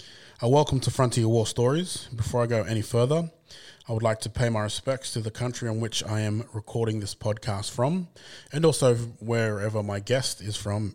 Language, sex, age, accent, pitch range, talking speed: English, male, 20-39, Australian, 105-125 Hz, 190 wpm